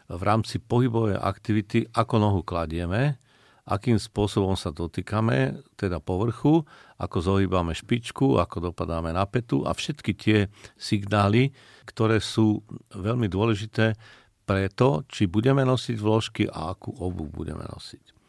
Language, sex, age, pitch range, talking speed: Slovak, male, 50-69, 90-115 Hz, 130 wpm